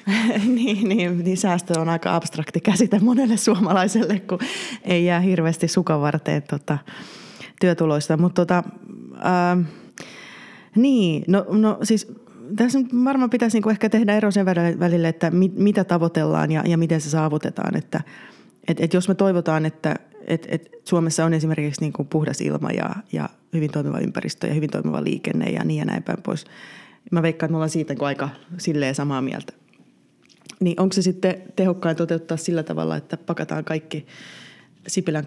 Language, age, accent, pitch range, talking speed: Finnish, 20-39, native, 155-185 Hz, 160 wpm